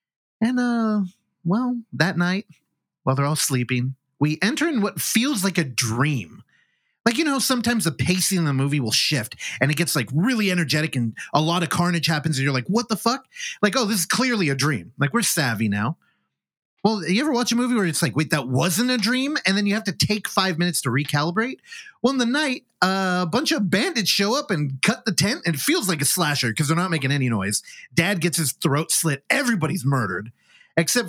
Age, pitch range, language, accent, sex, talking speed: 30-49, 140-210 Hz, English, American, male, 220 wpm